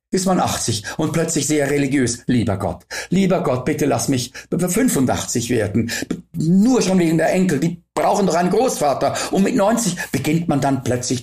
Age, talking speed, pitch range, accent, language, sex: 50-69, 180 wpm, 105-165 Hz, German, German, male